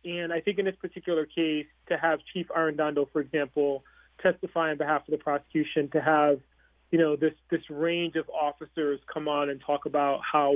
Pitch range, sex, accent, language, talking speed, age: 150-170 Hz, male, American, English, 195 wpm, 30-49